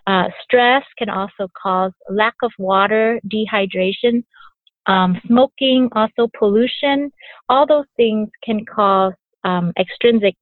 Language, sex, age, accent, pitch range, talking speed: English, female, 30-49, American, 190-230 Hz, 115 wpm